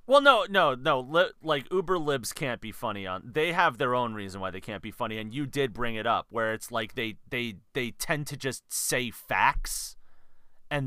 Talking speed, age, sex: 215 wpm, 30-49, male